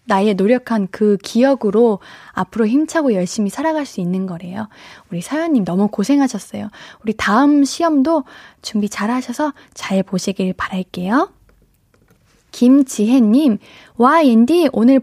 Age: 20-39